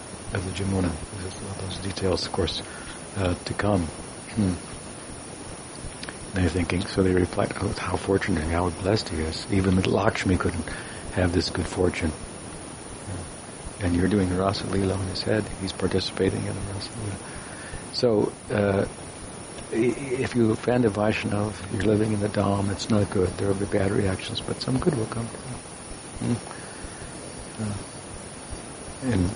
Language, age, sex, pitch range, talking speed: English, 60-79, male, 90-110 Hz, 155 wpm